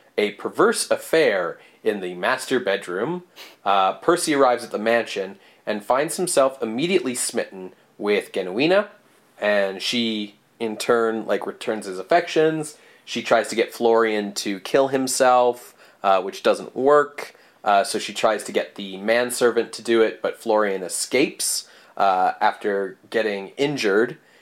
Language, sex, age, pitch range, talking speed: English, male, 30-49, 110-140 Hz, 145 wpm